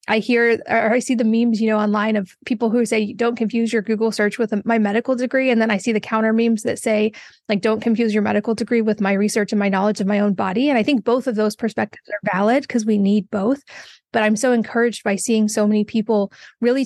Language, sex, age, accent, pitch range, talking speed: English, female, 20-39, American, 210-240 Hz, 255 wpm